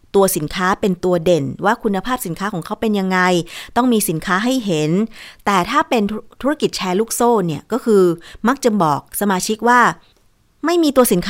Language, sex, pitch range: Thai, female, 175-225 Hz